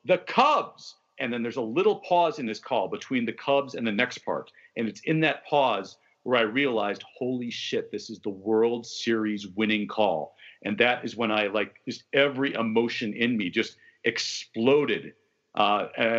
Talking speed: 185 wpm